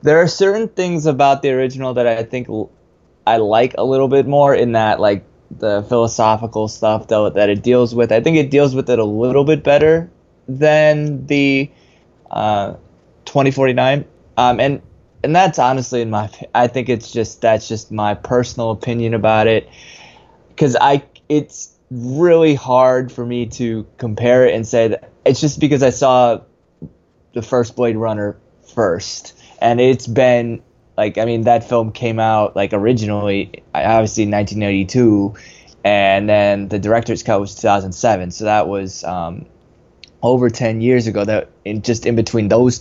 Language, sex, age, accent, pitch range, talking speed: English, male, 20-39, American, 110-135 Hz, 165 wpm